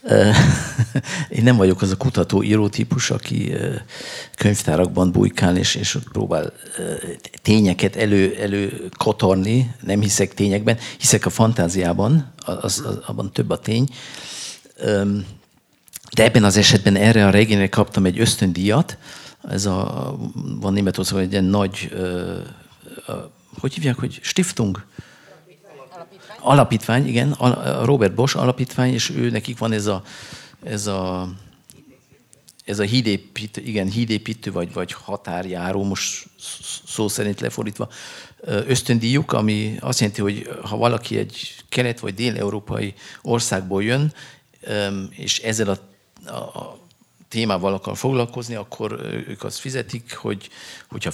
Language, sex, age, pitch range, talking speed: Hungarian, male, 50-69, 100-120 Hz, 120 wpm